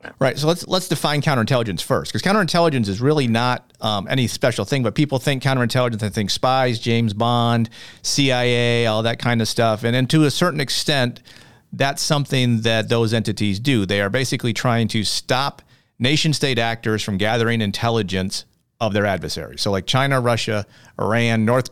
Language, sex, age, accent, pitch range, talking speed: English, male, 40-59, American, 105-130 Hz, 175 wpm